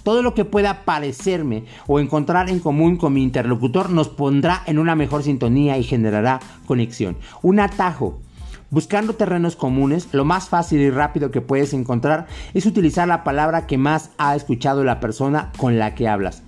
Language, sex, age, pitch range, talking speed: Spanish, male, 50-69, 130-175 Hz, 175 wpm